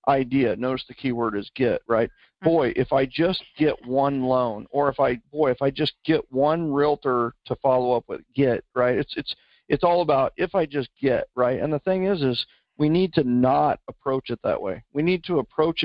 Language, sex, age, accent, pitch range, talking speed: English, male, 50-69, American, 125-150 Hz, 215 wpm